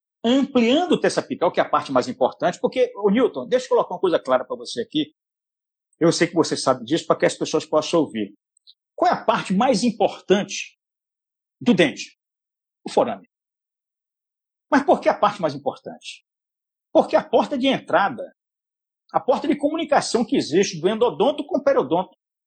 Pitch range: 170-265 Hz